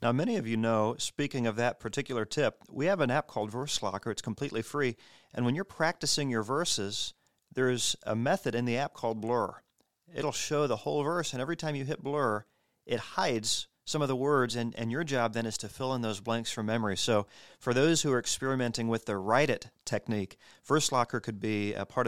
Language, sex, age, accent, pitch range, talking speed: English, male, 40-59, American, 110-130 Hz, 215 wpm